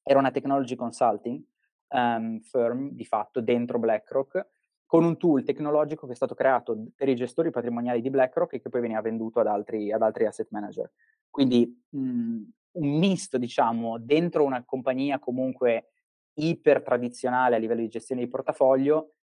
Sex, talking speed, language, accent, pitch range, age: male, 160 wpm, Italian, native, 115-140 Hz, 20-39